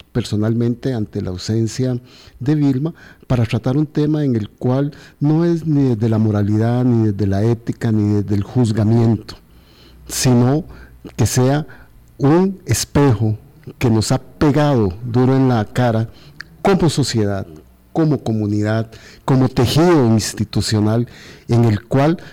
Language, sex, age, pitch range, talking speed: Spanish, male, 50-69, 110-140 Hz, 135 wpm